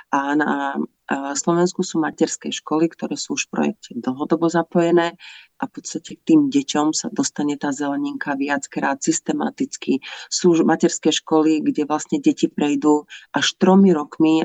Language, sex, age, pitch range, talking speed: Slovak, female, 40-59, 145-180 Hz, 145 wpm